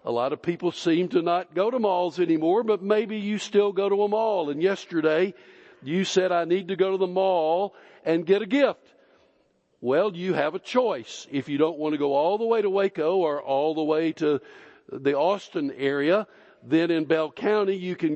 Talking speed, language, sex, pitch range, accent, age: 210 wpm, English, male, 165-210 Hz, American, 60-79